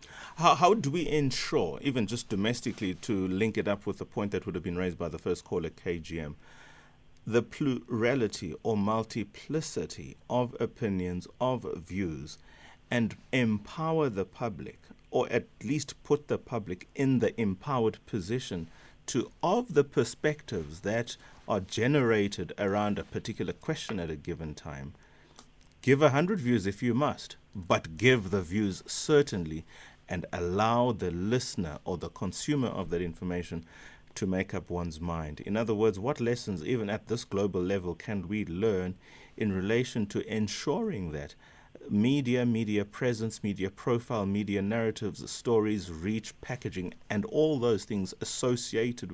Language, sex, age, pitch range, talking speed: English, male, 30-49, 90-120 Hz, 150 wpm